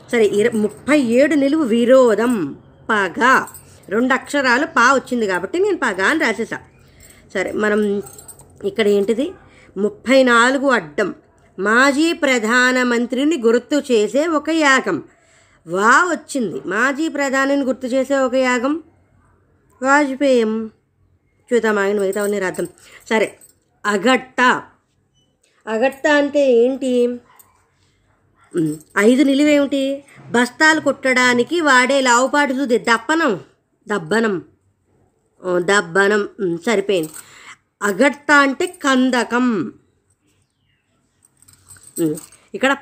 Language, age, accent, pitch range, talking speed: Telugu, 20-39, native, 200-270 Hz, 85 wpm